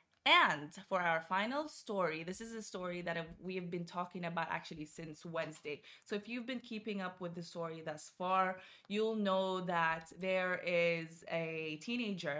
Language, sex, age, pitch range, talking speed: Arabic, female, 20-39, 165-195 Hz, 175 wpm